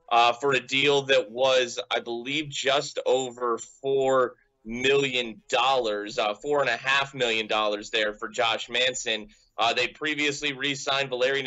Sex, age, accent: male, 20-39, American